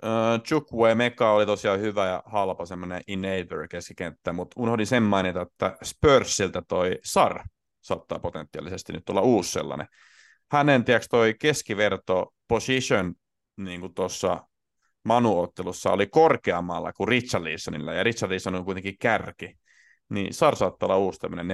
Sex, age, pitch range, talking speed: male, 30-49, 90-135 Hz, 135 wpm